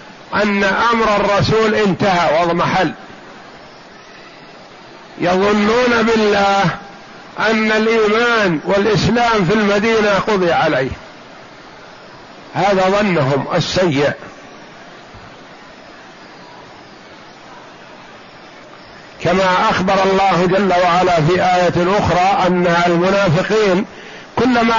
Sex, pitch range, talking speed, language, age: male, 170-210 Hz, 70 wpm, Arabic, 50-69